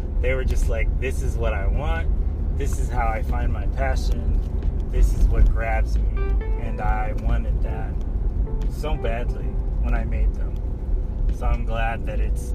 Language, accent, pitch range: English, American, 70-105 Hz